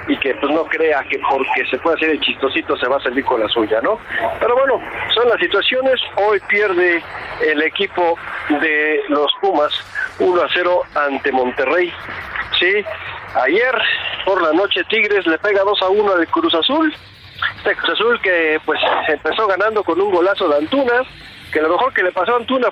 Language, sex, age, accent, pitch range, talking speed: Spanish, male, 50-69, Argentinian, 175-295 Hz, 190 wpm